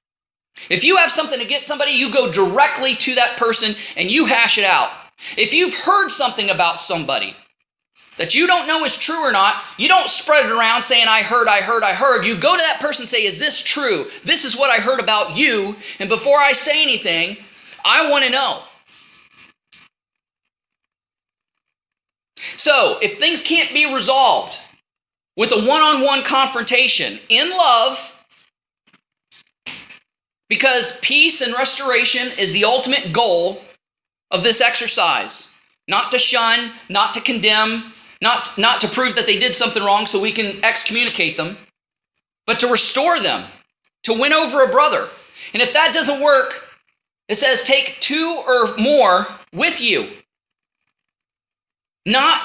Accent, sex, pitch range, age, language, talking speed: American, male, 225-295 Hz, 30-49, English, 155 wpm